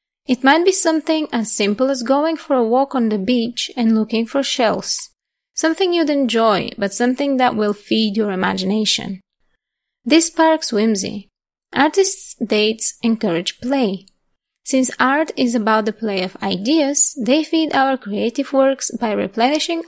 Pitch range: 215-285 Hz